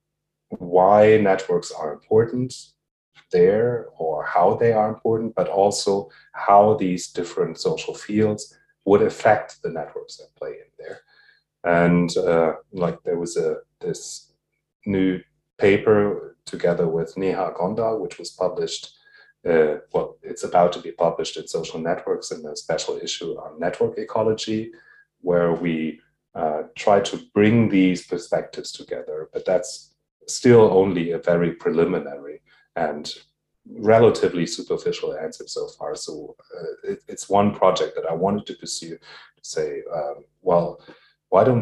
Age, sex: 30-49, male